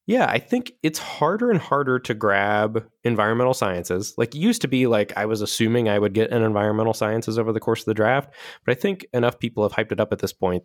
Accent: American